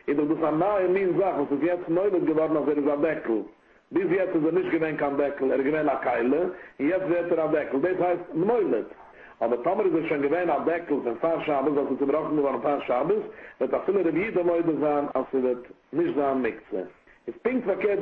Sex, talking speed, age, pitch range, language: male, 175 wpm, 60-79, 140-175 Hz, English